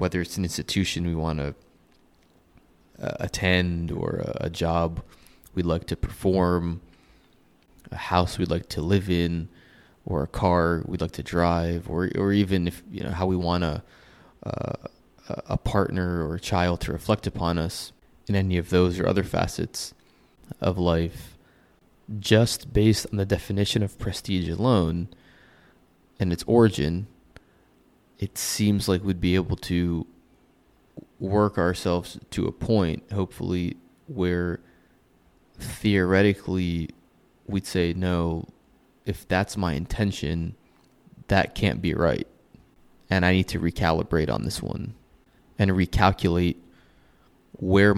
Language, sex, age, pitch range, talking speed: English, male, 20-39, 85-100 Hz, 135 wpm